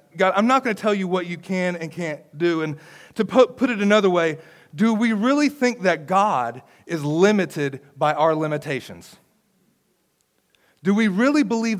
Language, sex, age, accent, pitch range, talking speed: English, male, 40-59, American, 155-205 Hz, 175 wpm